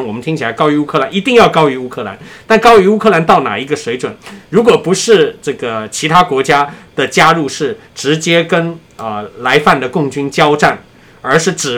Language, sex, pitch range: Chinese, male, 140-185 Hz